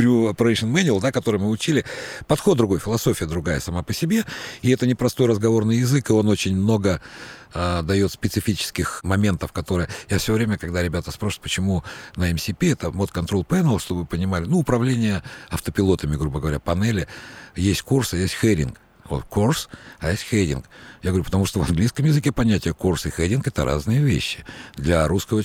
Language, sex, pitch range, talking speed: Russian, male, 90-115 Hz, 165 wpm